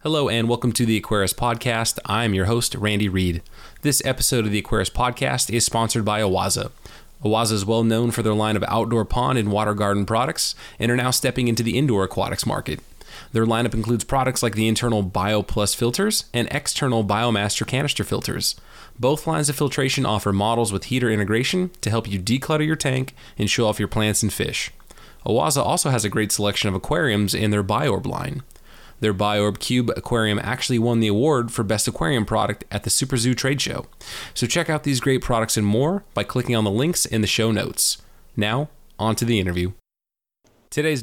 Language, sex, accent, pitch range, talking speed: English, male, American, 105-130 Hz, 195 wpm